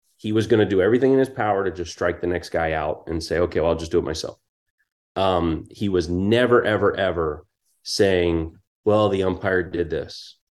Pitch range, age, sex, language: 95-120 Hz, 30-49, male, English